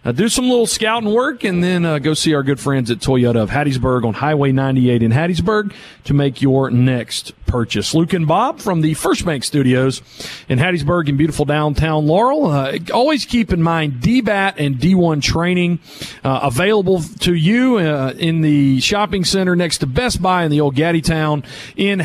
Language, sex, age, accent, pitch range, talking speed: English, male, 40-59, American, 140-180 Hz, 190 wpm